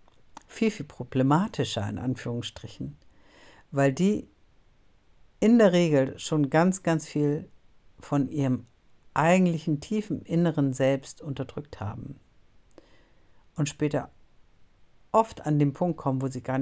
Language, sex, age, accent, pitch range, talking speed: German, female, 60-79, German, 130-165 Hz, 115 wpm